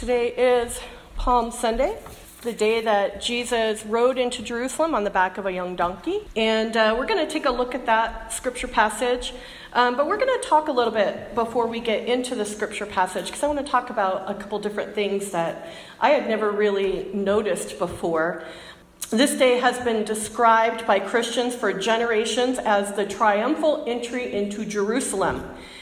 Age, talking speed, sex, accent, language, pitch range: 40-59, 180 wpm, female, American, English, 210-255 Hz